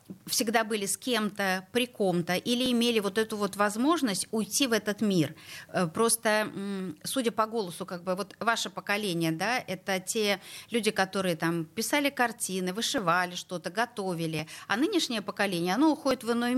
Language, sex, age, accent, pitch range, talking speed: Russian, female, 30-49, native, 180-235 Hz, 155 wpm